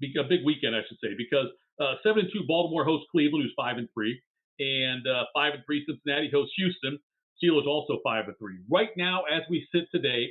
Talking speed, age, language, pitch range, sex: 215 wpm, 50-69, English, 130-175 Hz, male